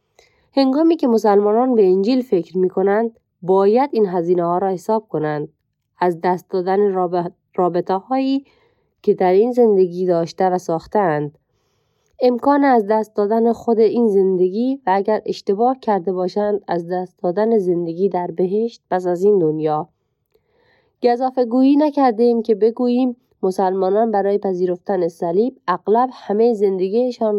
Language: Persian